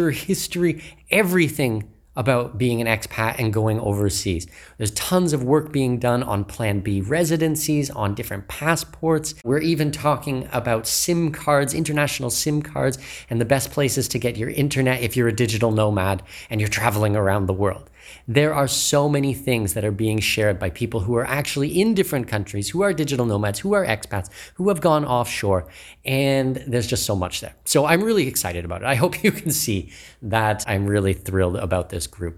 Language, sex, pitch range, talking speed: English, male, 100-145 Hz, 190 wpm